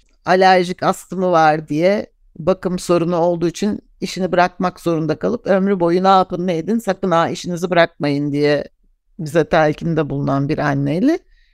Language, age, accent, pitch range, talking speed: Turkish, 60-79, native, 170-230 Hz, 145 wpm